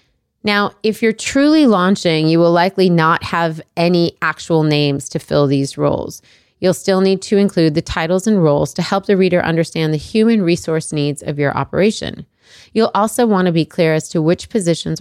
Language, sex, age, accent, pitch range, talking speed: English, female, 30-49, American, 150-190 Hz, 190 wpm